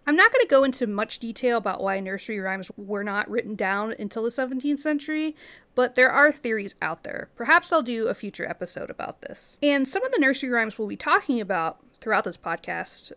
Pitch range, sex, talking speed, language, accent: 215-295 Hz, female, 215 wpm, English, American